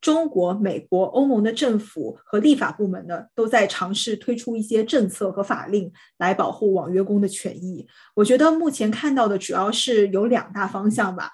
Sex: female